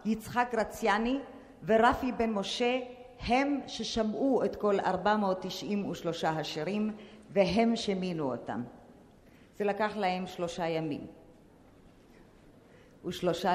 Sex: female